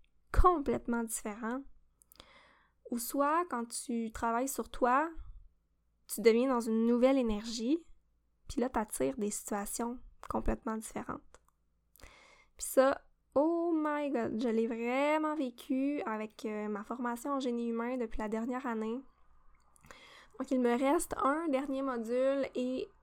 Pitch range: 225-270 Hz